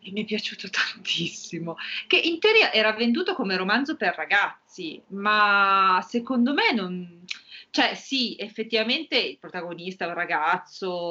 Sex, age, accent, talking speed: female, 30-49, native, 135 wpm